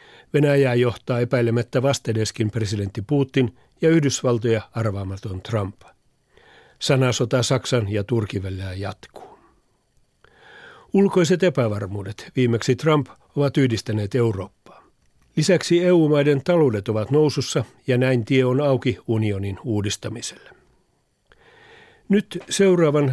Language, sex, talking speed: Finnish, male, 95 wpm